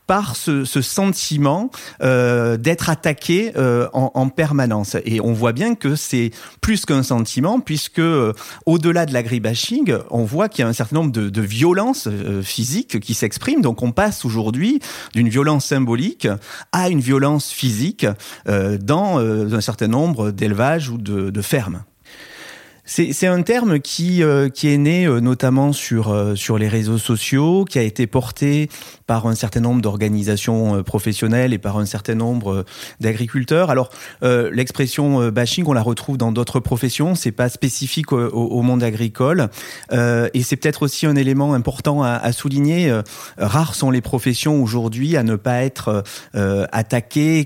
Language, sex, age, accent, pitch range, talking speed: French, male, 40-59, French, 115-150 Hz, 175 wpm